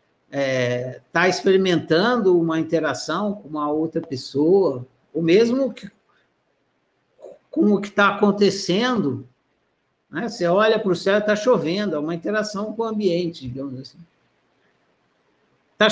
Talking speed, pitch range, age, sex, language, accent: 130 wpm, 190-250 Hz, 60-79, male, Portuguese, Brazilian